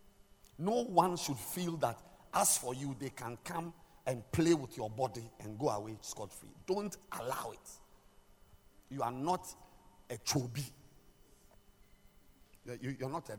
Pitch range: 100-140 Hz